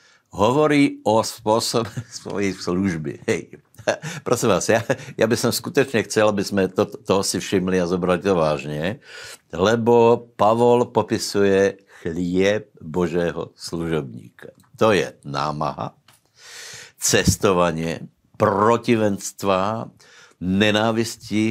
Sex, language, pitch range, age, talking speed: male, Slovak, 90-105 Hz, 60-79, 95 wpm